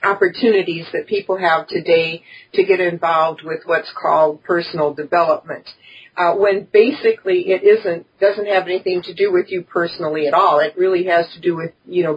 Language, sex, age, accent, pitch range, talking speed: English, female, 50-69, American, 170-210 Hz, 180 wpm